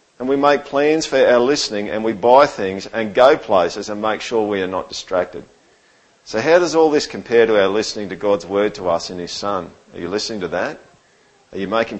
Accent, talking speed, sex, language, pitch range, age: Australian, 230 wpm, male, English, 100-145 Hz, 50-69